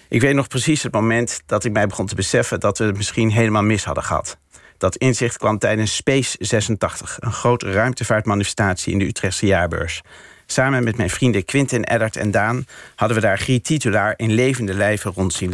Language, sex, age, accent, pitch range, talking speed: Dutch, male, 50-69, Dutch, 100-125 Hz, 195 wpm